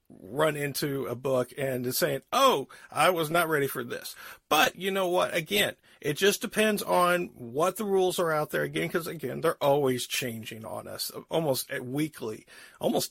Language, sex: English, male